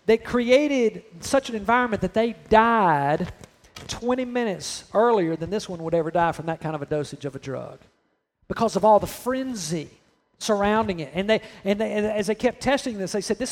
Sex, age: male, 40-59